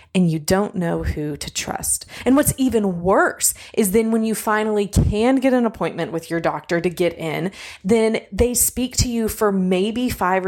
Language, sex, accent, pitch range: English, female, American, 165-210 Hz